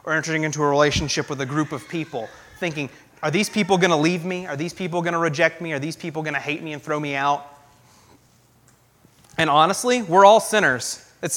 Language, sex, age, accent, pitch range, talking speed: English, male, 30-49, American, 130-185 Hz, 220 wpm